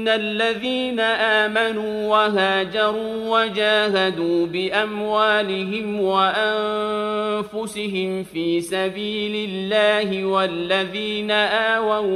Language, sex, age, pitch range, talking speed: Urdu, male, 40-59, 190-215 Hz, 60 wpm